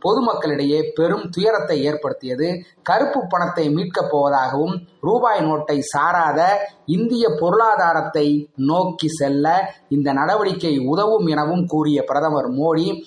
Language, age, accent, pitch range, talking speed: Tamil, 30-49, native, 150-195 Hz, 95 wpm